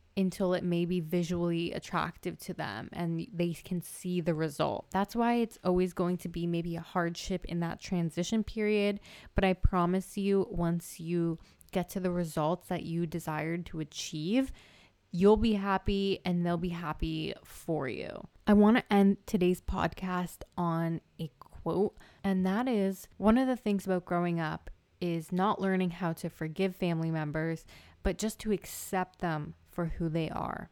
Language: English